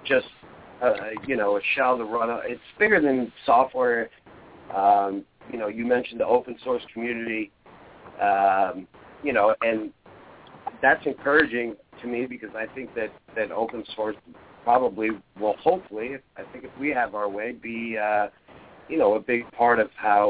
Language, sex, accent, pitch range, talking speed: English, male, American, 105-120 Hz, 170 wpm